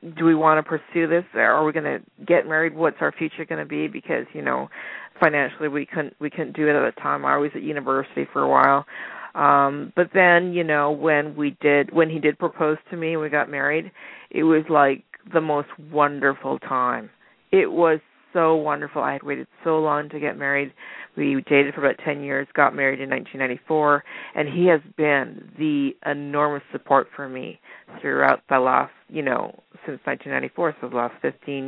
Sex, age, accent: female, 40-59, American